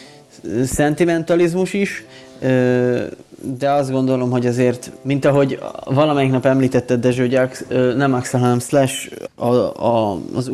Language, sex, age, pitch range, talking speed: Hungarian, male, 20-39, 120-130 Hz, 125 wpm